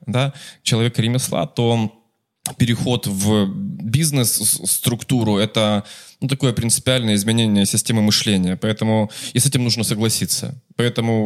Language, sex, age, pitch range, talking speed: English, male, 20-39, 105-130 Hz, 125 wpm